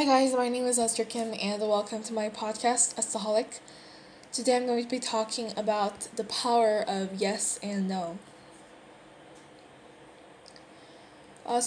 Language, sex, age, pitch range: Korean, female, 10-29, 205-235 Hz